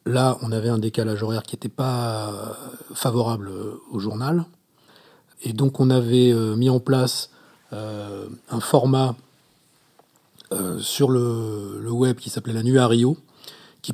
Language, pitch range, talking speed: French, 115-140 Hz, 150 wpm